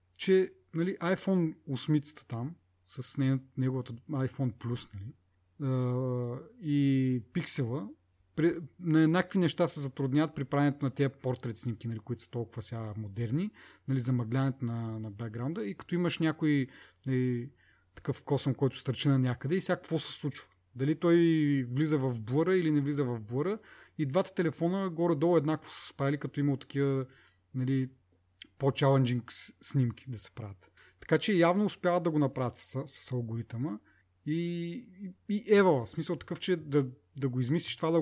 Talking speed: 160 wpm